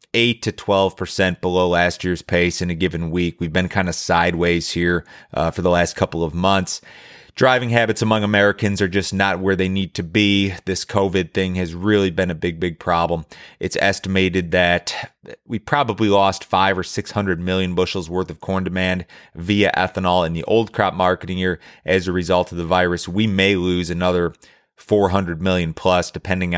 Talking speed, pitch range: 185 wpm, 90-105 Hz